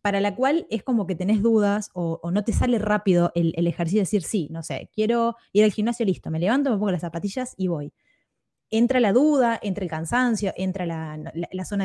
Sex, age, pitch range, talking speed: female, 20-39, 180-230 Hz, 235 wpm